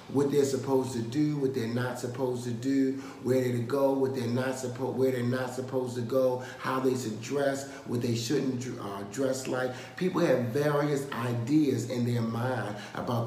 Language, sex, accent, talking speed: English, male, American, 190 wpm